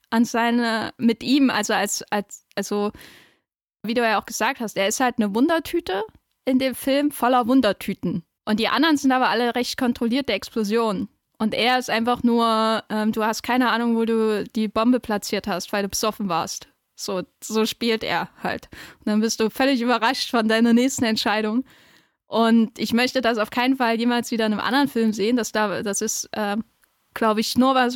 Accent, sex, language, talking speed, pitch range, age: German, female, German, 195 wpm, 210-235 Hz, 10-29